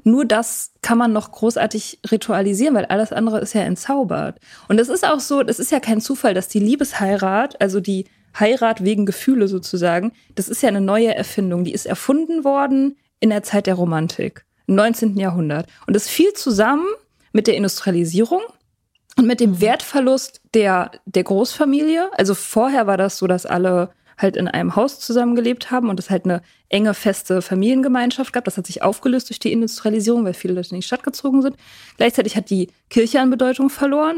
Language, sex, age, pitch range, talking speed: German, female, 20-39, 195-250 Hz, 190 wpm